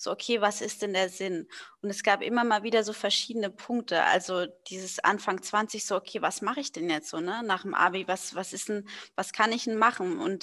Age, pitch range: 20-39, 190-215 Hz